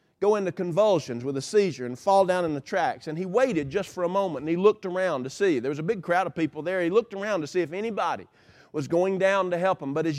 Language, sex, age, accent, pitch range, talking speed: English, male, 40-59, American, 180-245 Hz, 285 wpm